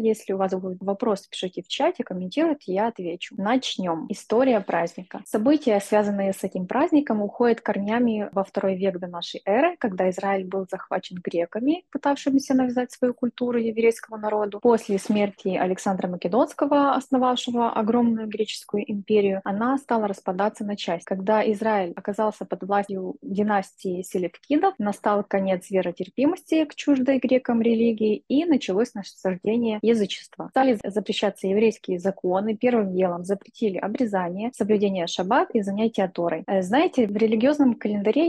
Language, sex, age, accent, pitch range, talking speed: Russian, female, 20-39, native, 190-245 Hz, 135 wpm